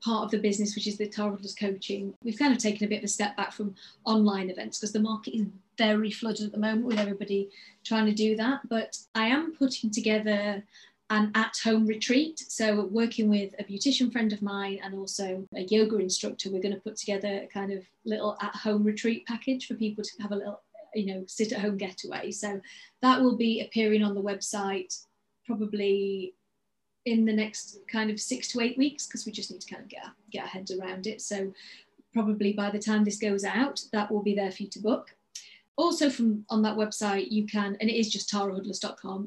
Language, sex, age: English, female, 30-49